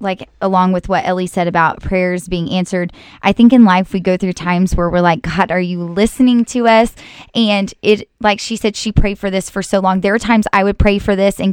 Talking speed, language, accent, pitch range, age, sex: 250 wpm, English, American, 180-205 Hz, 20-39, female